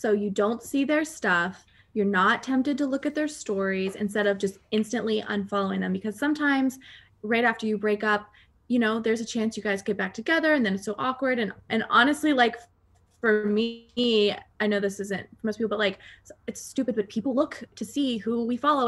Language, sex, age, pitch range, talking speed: English, female, 20-39, 200-260 Hz, 215 wpm